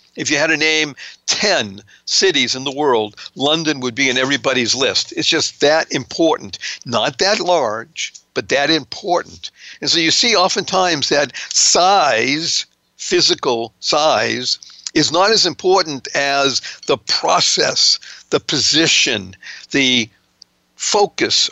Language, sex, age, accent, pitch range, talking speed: English, male, 60-79, American, 130-185 Hz, 130 wpm